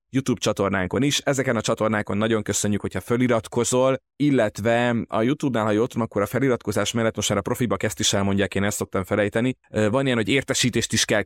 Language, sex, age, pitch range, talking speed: Hungarian, male, 30-49, 100-120 Hz, 190 wpm